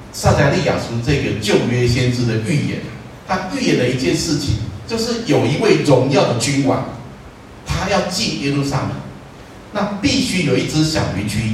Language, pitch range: Chinese, 105-165 Hz